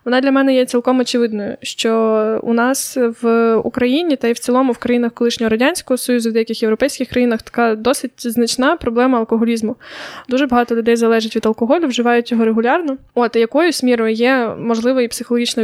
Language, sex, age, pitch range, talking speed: Ukrainian, female, 20-39, 230-255 Hz, 175 wpm